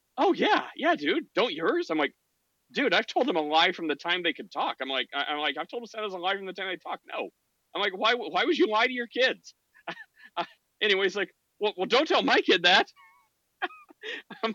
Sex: male